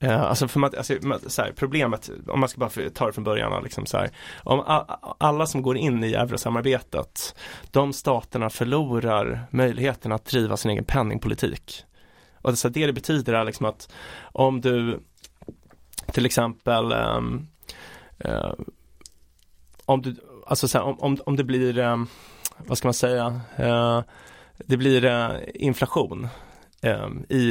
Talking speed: 145 wpm